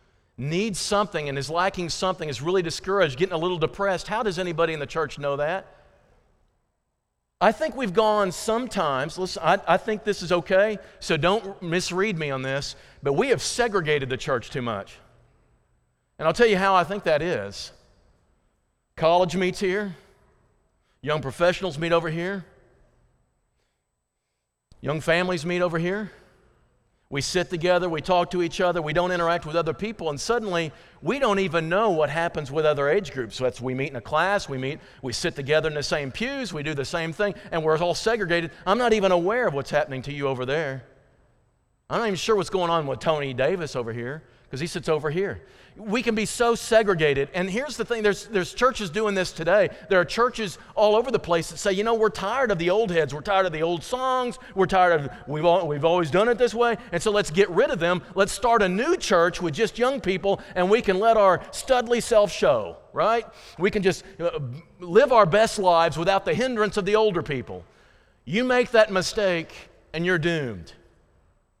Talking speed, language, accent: 205 wpm, English, American